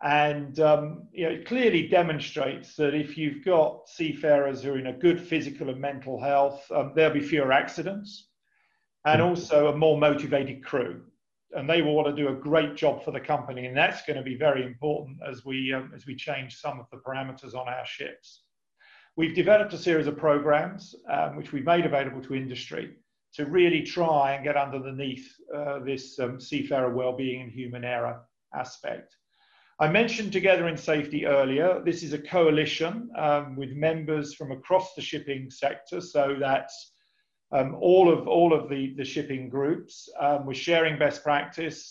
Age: 40-59